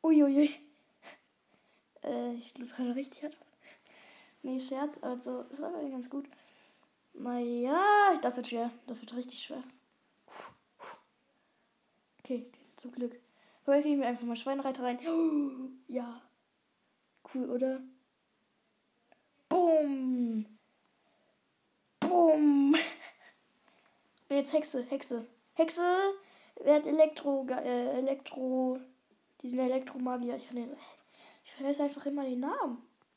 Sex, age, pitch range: female, 10-29, 250-300 Hz